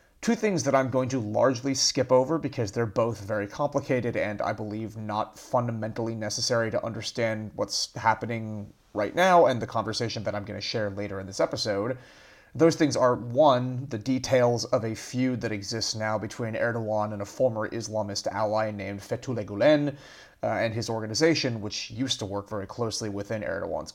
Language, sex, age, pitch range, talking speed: English, male, 30-49, 110-135 Hz, 180 wpm